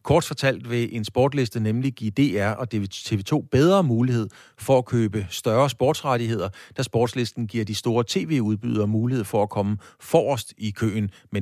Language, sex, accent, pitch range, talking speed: Danish, male, native, 105-130 Hz, 165 wpm